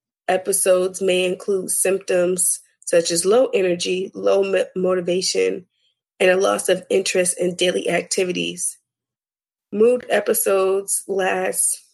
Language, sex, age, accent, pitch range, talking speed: English, female, 20-39, American, 180-215 Hz, 105 wpm